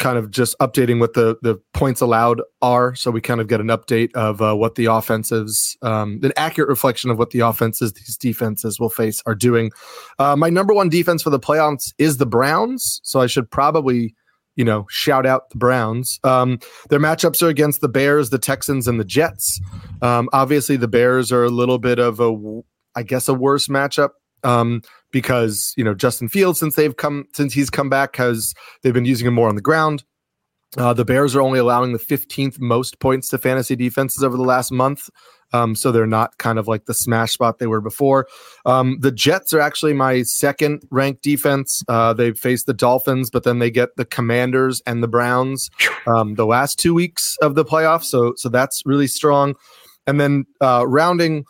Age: 30-49